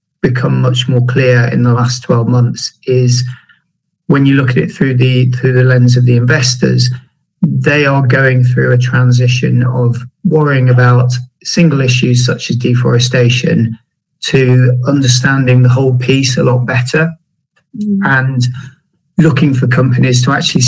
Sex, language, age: male, English, 40-59